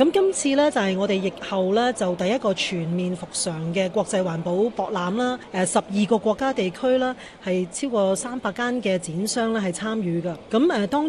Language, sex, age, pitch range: Chinese, female, 30-49, 185-240 Hz